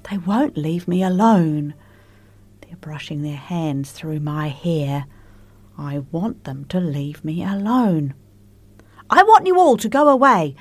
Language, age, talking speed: English, 40-59, 145 wpm